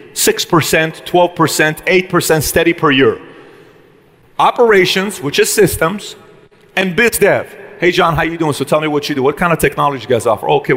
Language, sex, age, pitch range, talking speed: English, male, 30-49, 150-185 Hz, 195 wpm